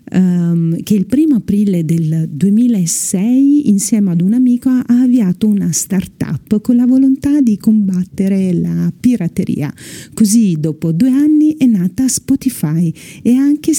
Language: Italian